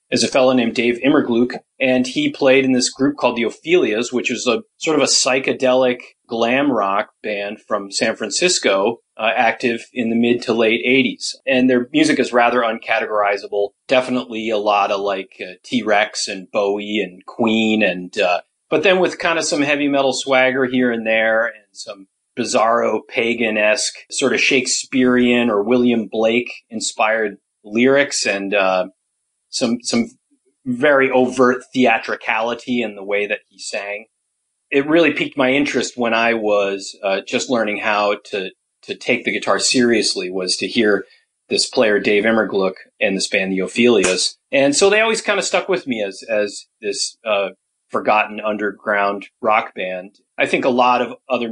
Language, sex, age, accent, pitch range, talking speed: English, male, 30-49, American, 105-130 Hz, 170 wpm